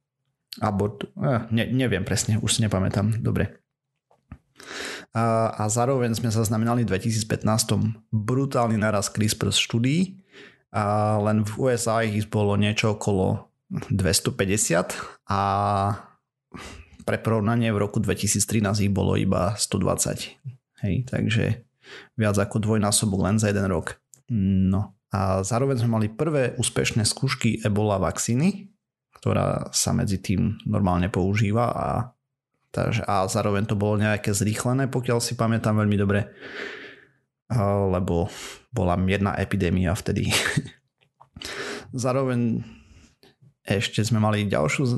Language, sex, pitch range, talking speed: Slovak, male, 100-120 Hz, 115 wpm